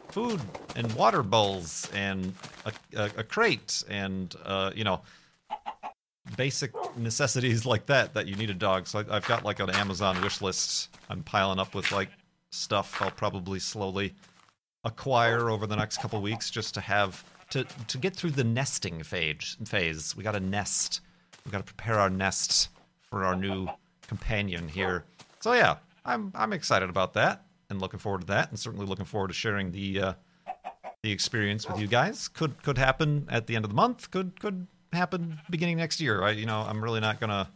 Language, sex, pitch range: English, male, 100-145 Hz